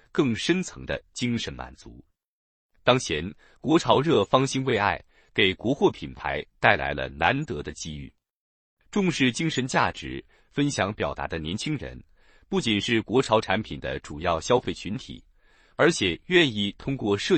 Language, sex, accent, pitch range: Chinese, male, native, 90-145 Hz